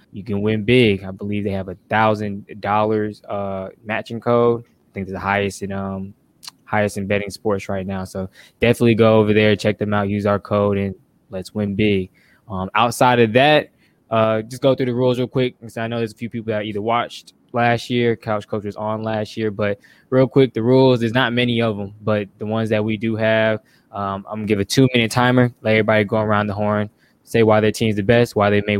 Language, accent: English, American